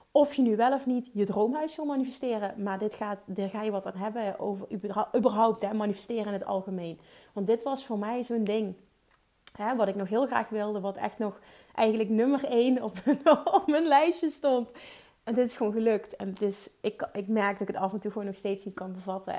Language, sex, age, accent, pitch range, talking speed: Dutch, female, 30-49, Dutch, 195-225 Hz, 230 wpm